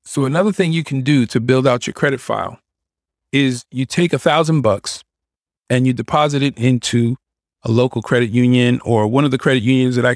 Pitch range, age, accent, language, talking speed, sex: 120-145 Hz, 40-59, American, English, 205 wpm, male